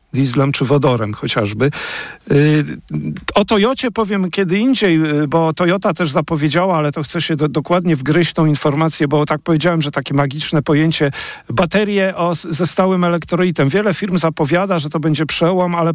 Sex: male